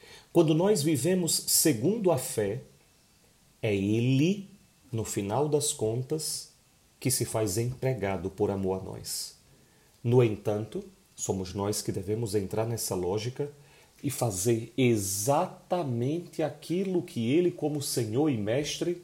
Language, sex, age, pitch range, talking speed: Portuguese, male, 40-59, 105-145 Hz, 125 wpm